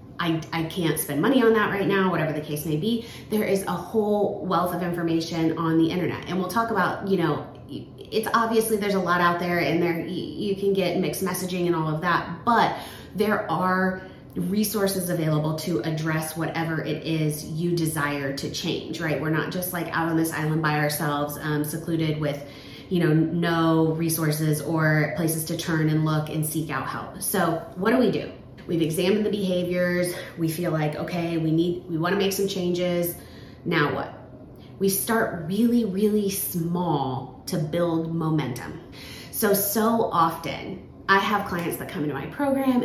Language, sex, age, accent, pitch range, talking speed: English, female, 30-49, American, 160-195 Hz, 185 wpm